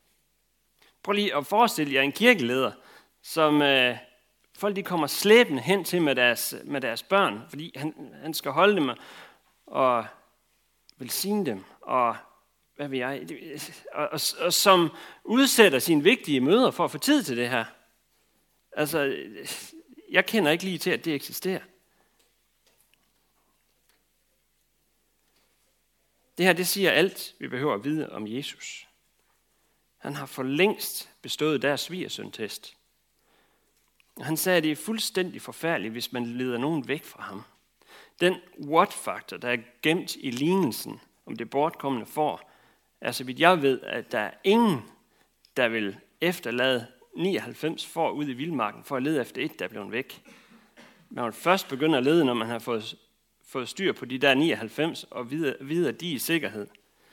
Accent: native